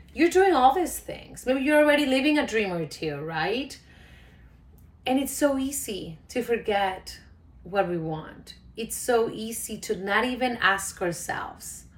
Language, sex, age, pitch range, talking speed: English, female, 30-49, 165-225 Hz, 155 wpm